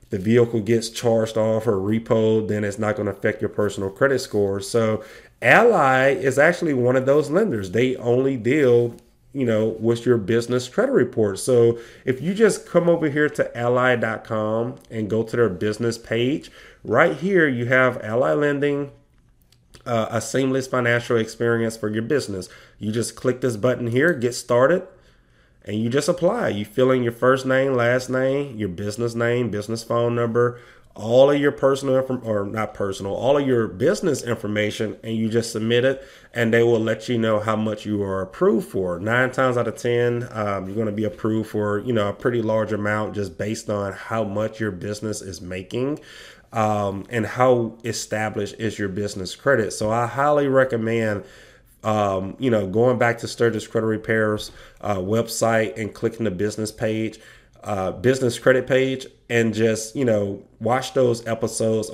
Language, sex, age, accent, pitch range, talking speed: English, male, 30-49, American, 105-125 Hz, 180 wpm